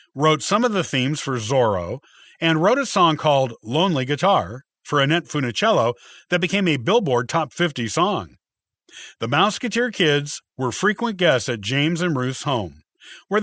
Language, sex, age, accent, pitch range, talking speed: English, male, 50-69, American, 125-185 Hz, 160 wpm